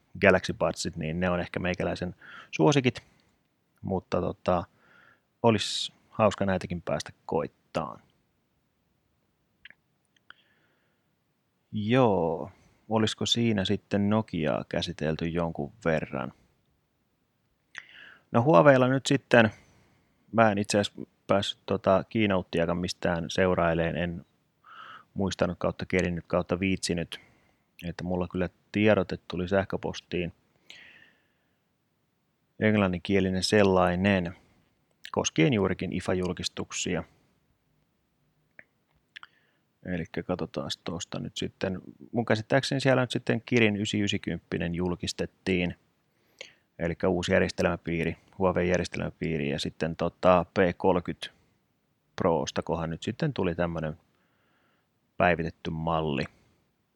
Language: Finnish